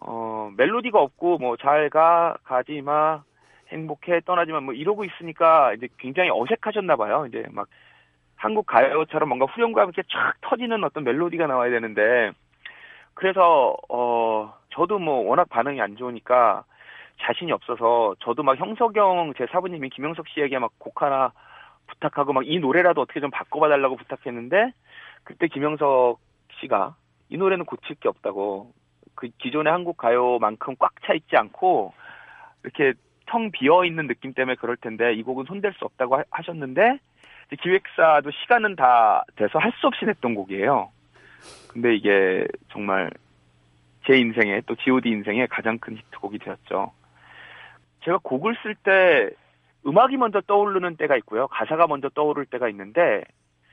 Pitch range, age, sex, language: 115-185 Hz, 30-49, male, Korean